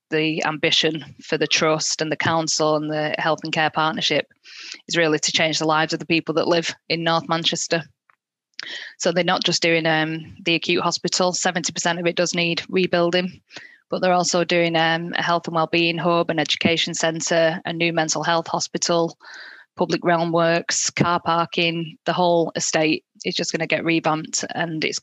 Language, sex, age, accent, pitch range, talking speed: English, female, 10-29, British, 160-175 Hz, 185 wpm